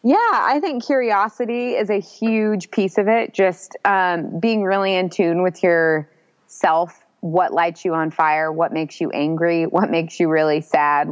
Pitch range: 150-180 Hz